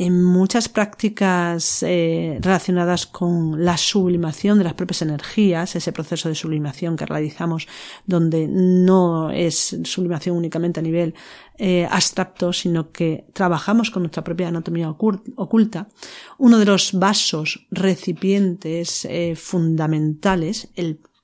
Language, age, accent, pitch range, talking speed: Spanish, 40-59, Spanish, 160-190 Hz, 120 wpm